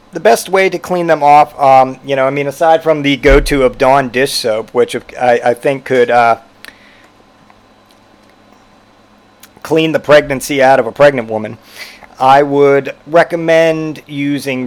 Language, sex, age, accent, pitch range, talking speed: English, male, 40-59, American, 140-175 Hz, 155 wpm